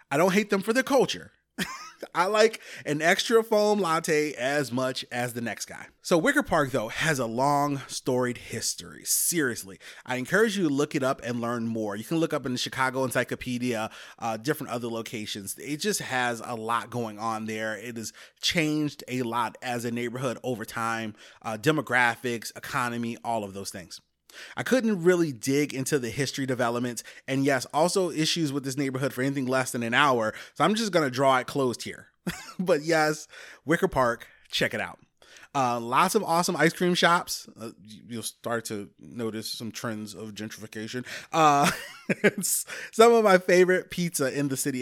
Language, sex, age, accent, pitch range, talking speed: English, male, 30-49, American, 120-155 Hz, 185 wpm